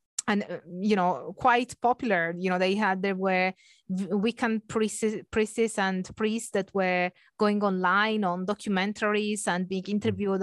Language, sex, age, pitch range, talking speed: English, female, 20-39, 185-220 Hz, 145 wpm